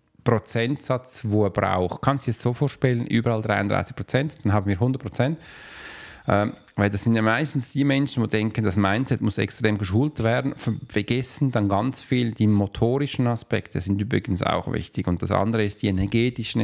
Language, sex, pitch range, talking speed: German, male, 100-125 Hz, 185 wpm